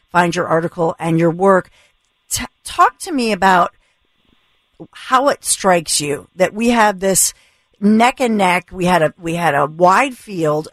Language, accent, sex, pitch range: English, American, female, 165-210 Hz